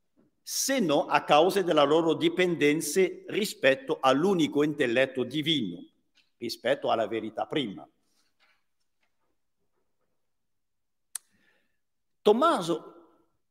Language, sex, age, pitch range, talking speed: English, male, 50-69, 130-210 Hz, 70 wpm